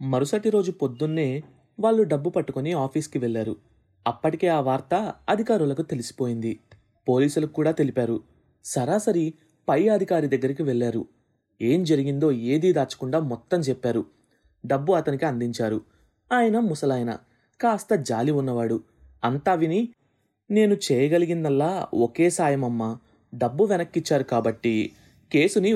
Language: Telugu